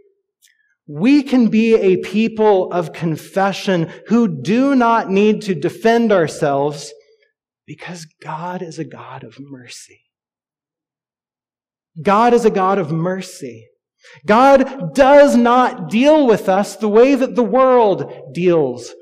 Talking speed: 125 wpm